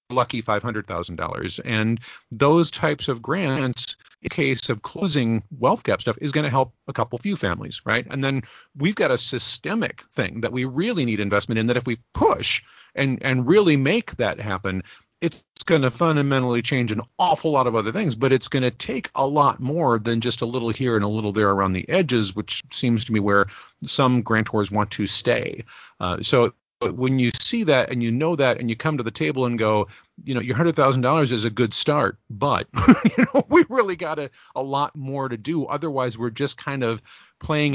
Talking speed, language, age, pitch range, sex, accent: 215 wpm, English, 40-59, 115-145 Hz, male, American